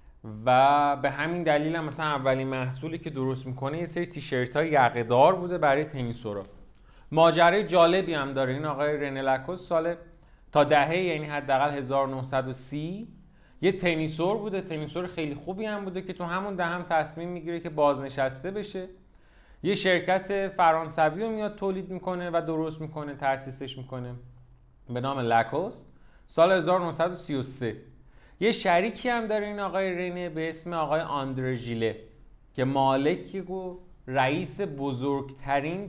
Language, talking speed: Persian, 145 wpm